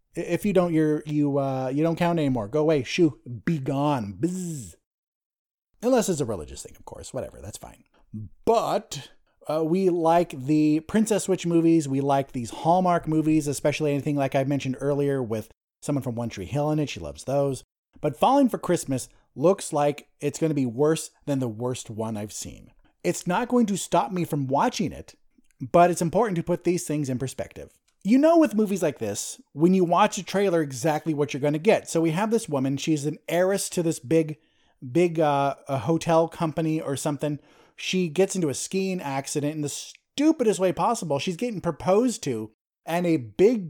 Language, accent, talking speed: English, American, 200 wpm